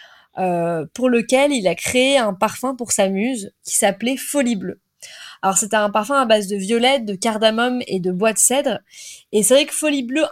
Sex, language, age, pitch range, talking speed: female, French, 20-39, 210-270 Hz, 210 wpm